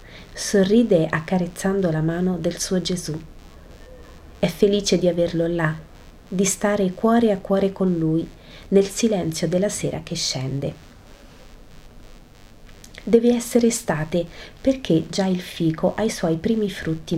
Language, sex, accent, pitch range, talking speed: Italian, female, native, 155-195 Hz, 130 wpm